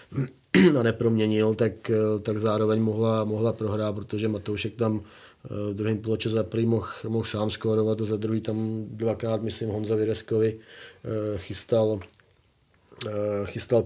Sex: male